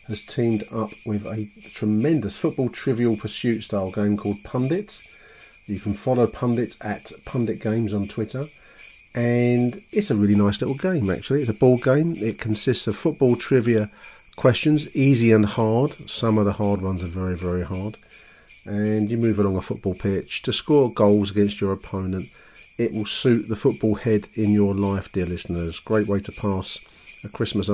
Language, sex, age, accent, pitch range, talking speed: English, male, 40-59, British, 105-130 Hz, 170 wpm